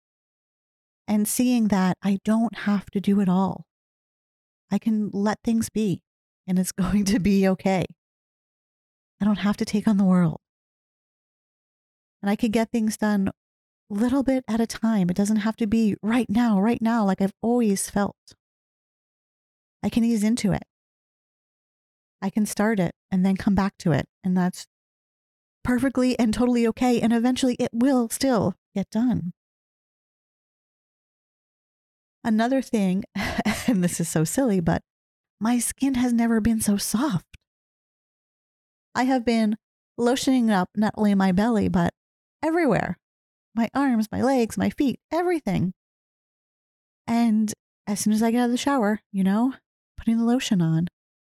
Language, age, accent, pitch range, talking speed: English, 40-59, American, 200-245 Hz, 155 wpm